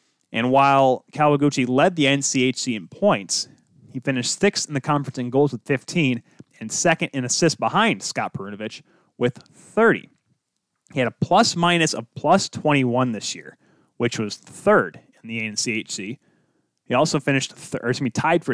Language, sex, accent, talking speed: English, male, American, 165 wpm